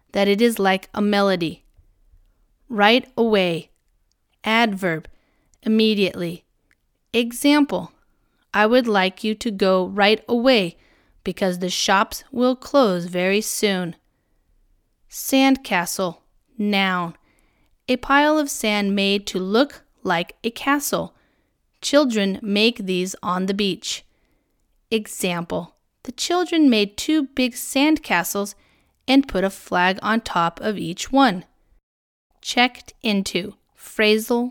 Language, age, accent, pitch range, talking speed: English, 30-49, American, 185-235 Hz, 110 wpm